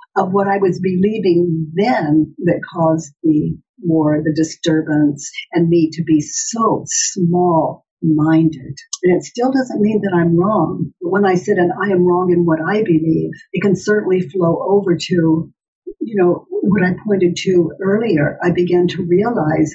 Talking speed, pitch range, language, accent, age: 170 wpm, 170-205 Hz, English, American, 60-79